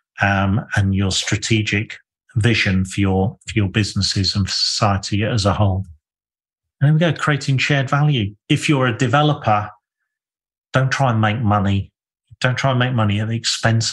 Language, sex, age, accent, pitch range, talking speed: English, male, 40-59, British, 105-140 Hz, 170 wpm